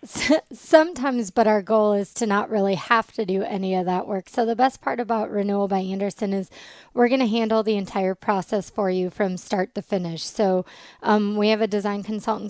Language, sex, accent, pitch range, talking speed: English, female, American, 190-220 Hz, 210 wpm